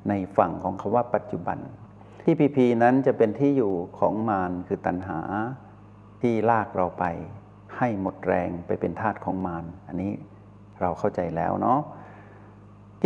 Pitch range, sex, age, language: 100-120 Hz, male, 60-79, Thai